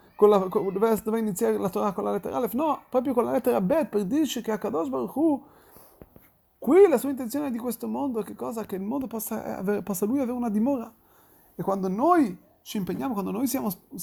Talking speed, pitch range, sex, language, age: 195 wpm, 185-255 Hz, male, Italian, 30-49